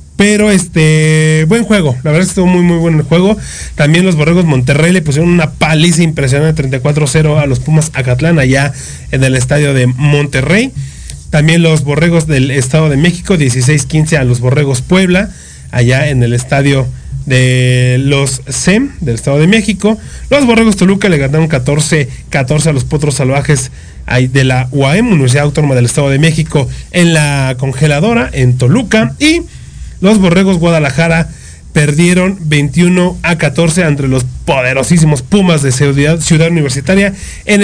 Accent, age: Mexican, 30-49